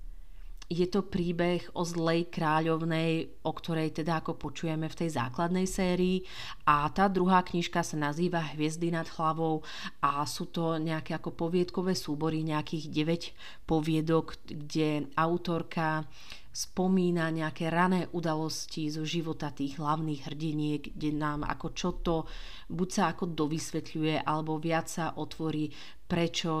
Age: 40-59